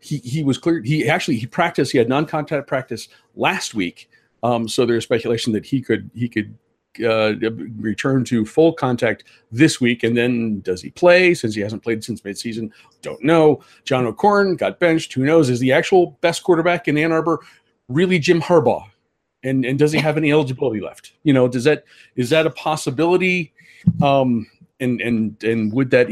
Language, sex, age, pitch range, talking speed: English, male, 40-59, 110-160 Hz, 190 wpm